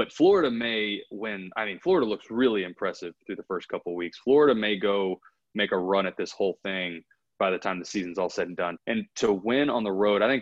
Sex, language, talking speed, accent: male, English, 240 wpm, American